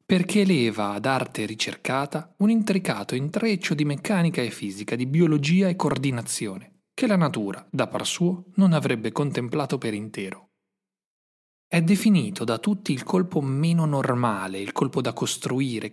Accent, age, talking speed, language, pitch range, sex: native, 30-49, 145 wpm, Italian, 115-180 Hz, male